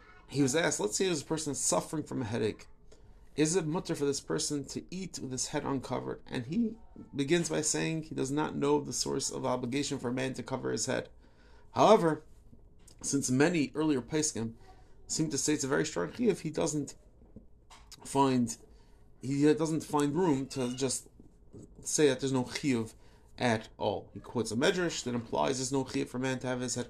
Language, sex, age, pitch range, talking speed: English, male, 30-49, 125-155 Hz, 200 wpm